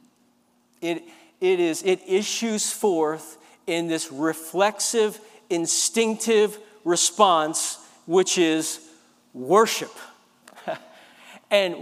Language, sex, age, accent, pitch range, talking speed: English, male, 50-69, American, 215-265 Hz, 75 wpm